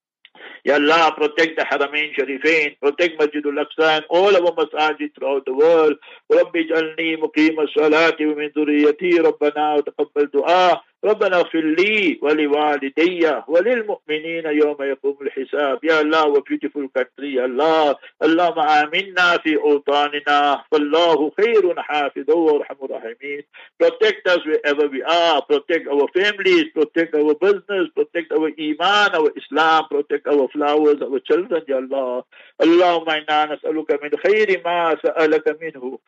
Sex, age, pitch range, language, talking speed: male, 60-79, 145-170 Hz, English, 95 wpm